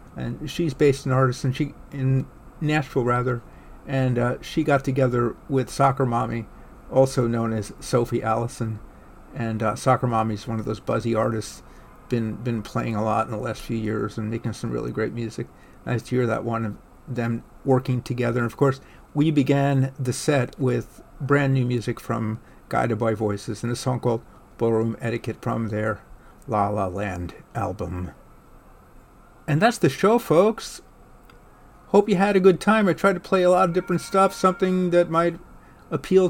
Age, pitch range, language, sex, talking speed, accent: 50-69, 115-155 Hz, English, male, 180 wpm, American